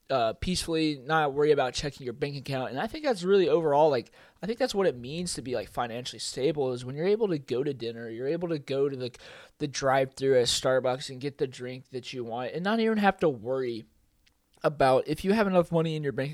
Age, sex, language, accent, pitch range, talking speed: 20-39, male, English, American, 135-185 Hz, 245 wpm